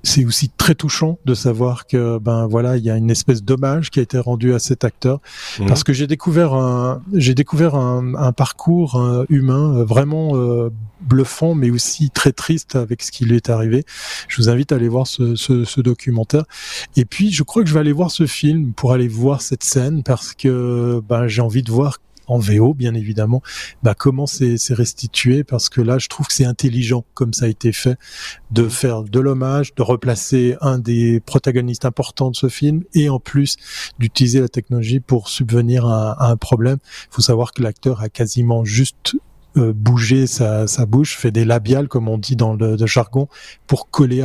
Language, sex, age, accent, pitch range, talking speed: French, male, 20-39, French, 115-135 Hz, 205 wpm